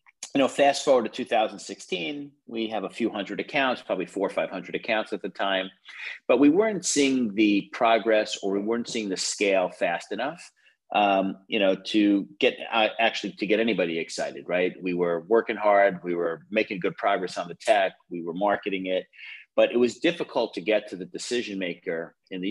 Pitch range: 95-120 Hz